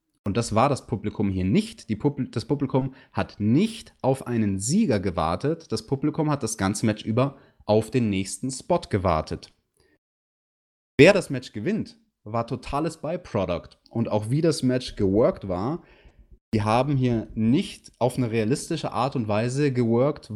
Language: German